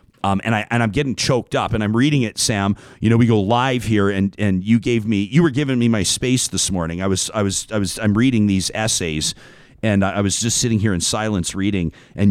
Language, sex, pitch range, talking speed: English, male, 90-115 Hz, 255 wpm